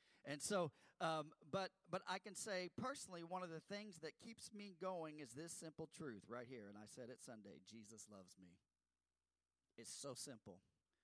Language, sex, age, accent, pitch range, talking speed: English, male, 40-59, American, 115-190 Hz, 185 wpm